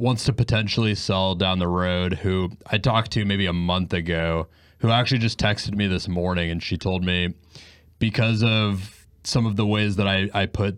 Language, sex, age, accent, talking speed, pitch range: English, male, 30-49, American, 200 wpm, 85-105 Hz